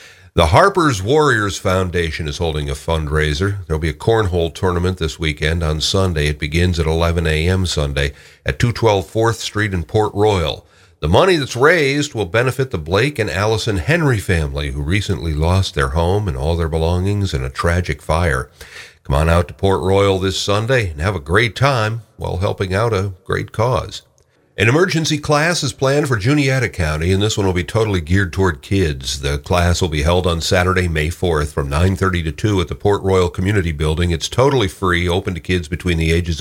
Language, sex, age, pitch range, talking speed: English, male, 50-69, 80-105 Hz, 200 wpm